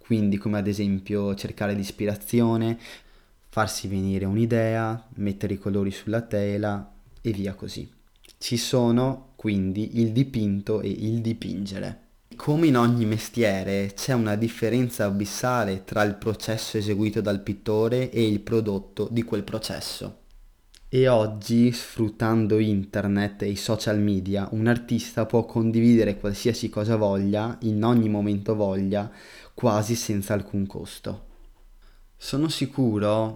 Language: Italian